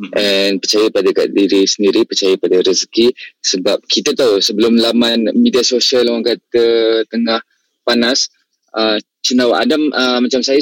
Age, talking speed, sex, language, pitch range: 20-39, 145 wpm, male, Malay, 105-135 Hz